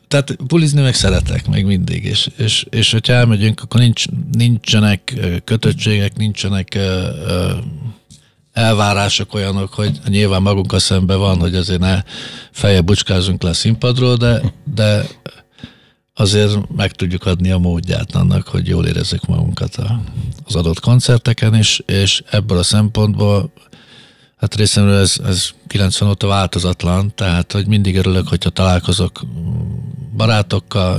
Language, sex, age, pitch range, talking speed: Hungarian, male, 50-69, 95-120 Hz, 130 wpm